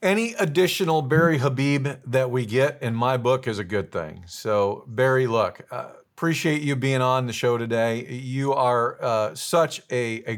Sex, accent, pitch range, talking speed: male, American, 115-160 Hz, 180 wpm